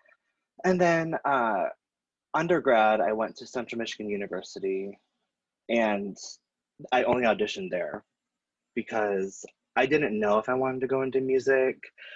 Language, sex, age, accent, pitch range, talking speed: English, male, 20-39, American, 100-165 Hz, 130 wpm